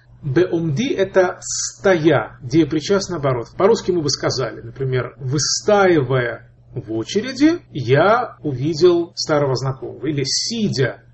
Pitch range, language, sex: 125-170 Hz, Russian, male